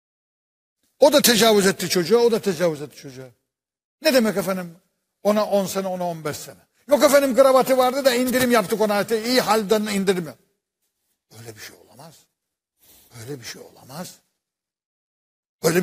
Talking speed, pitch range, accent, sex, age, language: 150 wpm, 155-215 Hz, native, male, 60-79, Turkish